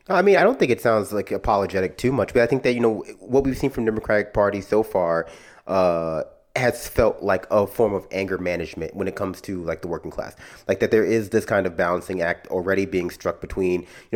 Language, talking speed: English, 235 wpm